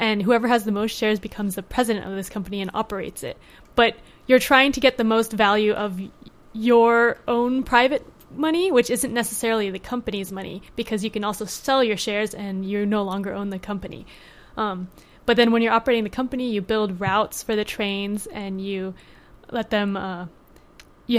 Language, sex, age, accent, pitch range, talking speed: English, female, 20-39, American, 200-235 Hz, 195 wpm